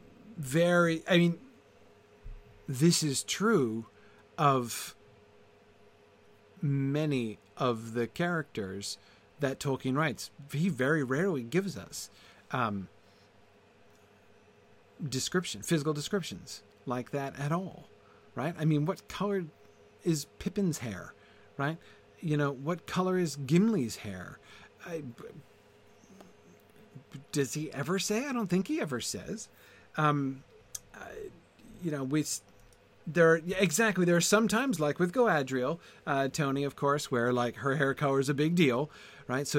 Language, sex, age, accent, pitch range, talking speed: English, male, 40-59, American, 110-170 Hz, 125 wpm